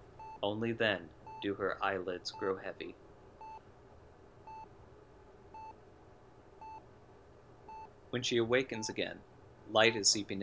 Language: English